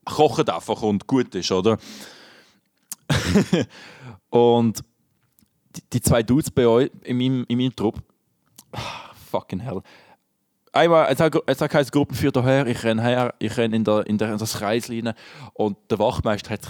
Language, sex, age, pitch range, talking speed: German, male, 20-39, 105-150 Hz, 160 wpm